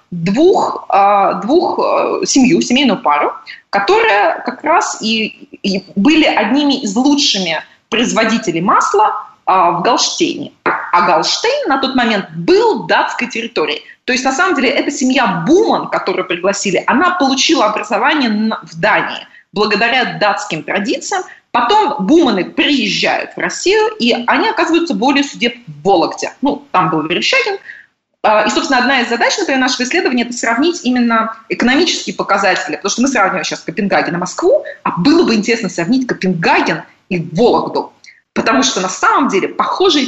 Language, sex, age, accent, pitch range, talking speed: Russian, female, 20-39, native, 205-315 Hz, 140 wpm